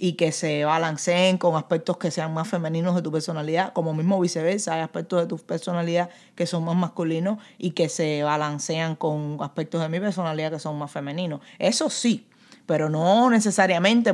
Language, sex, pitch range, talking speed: English, female, 165-195 Hz, 185 wpm